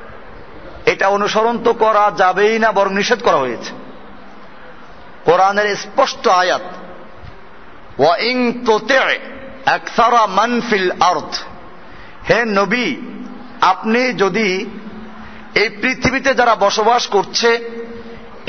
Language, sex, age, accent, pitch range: Bengali, male, 50-69, native, 195-240 Hz